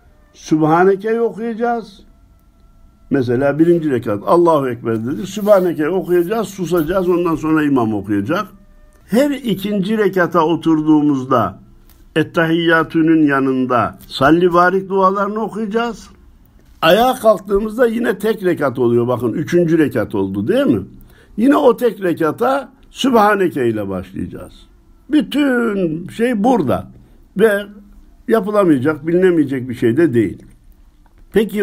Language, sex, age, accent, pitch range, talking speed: Turkish, male, 60-79, native, 125-195 Hz, 105 wpm